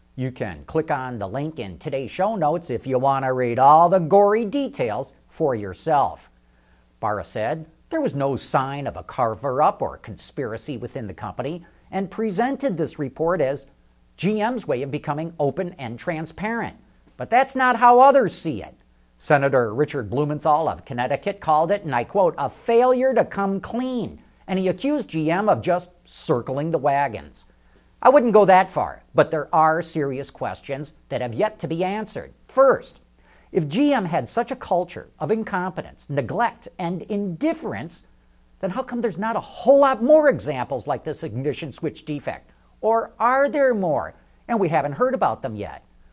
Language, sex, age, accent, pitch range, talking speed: English, male, 50-69, American, 135-215 Hz, 175 wpm